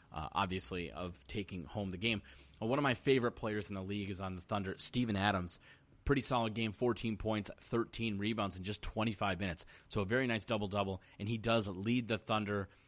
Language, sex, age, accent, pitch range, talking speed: English, male, 30-49, American, 100-125 Hz, 205 wpm